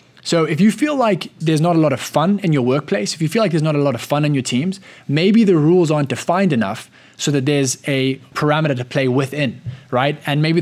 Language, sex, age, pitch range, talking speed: English, male, 20-39, 125-160 Hz, 250 wpm